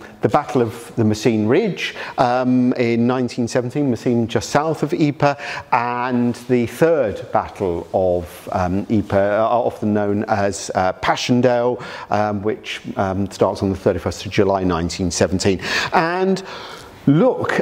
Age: 40-59